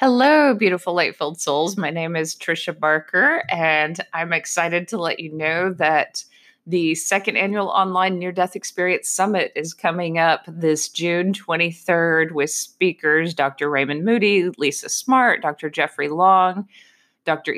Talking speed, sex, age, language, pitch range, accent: 145 wpm, female, 30-49, English, 160-185 Hz, American